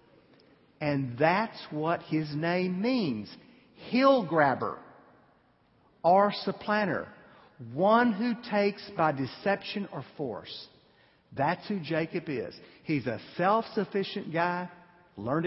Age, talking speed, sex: 50-69, 100 wpm, male